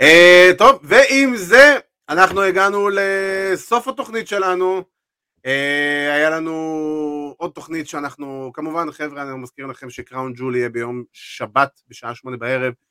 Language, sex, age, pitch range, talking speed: Hebrew, male, 30-49, 130-175 Hz, 130 wpm